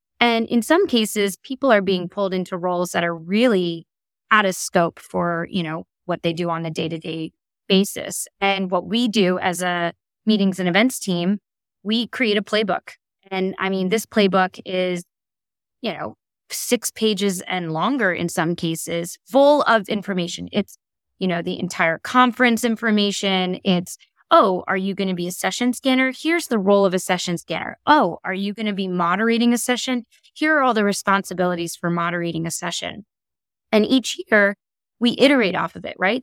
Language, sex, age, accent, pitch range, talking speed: English, female, 20-39, American, 175-220 Hz, 180 wpm